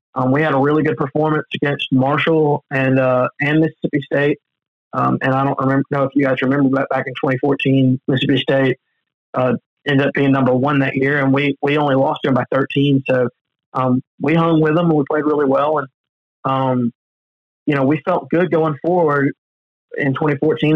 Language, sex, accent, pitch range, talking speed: English, male, American, 135-155 Hz, 200 wpm